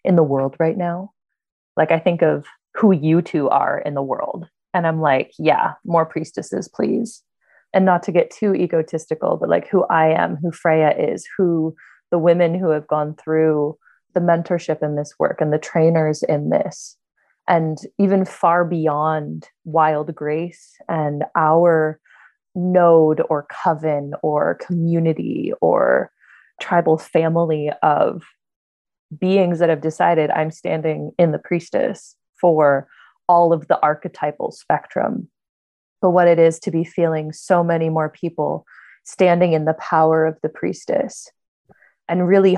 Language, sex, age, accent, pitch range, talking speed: English, female, 20-39, American, 155-180 Hz, 150 wpm